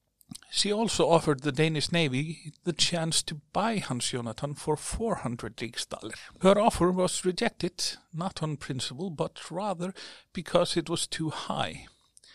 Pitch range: 130-175 Hz